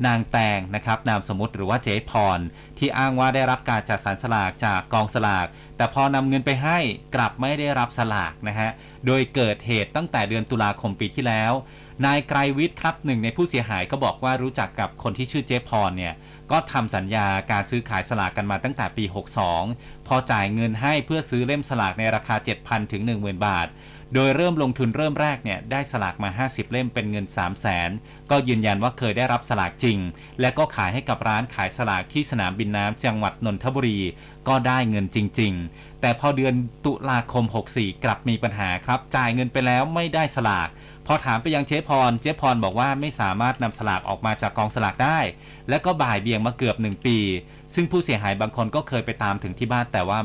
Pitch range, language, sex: 105-135 Hz, Thai, male